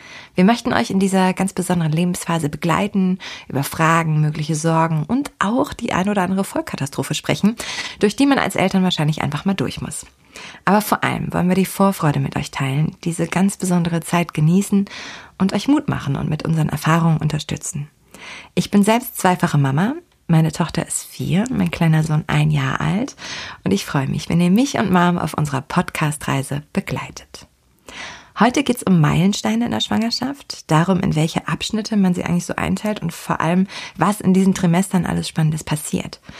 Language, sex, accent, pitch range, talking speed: German, female, German, 155-195 Hz, 180 wpm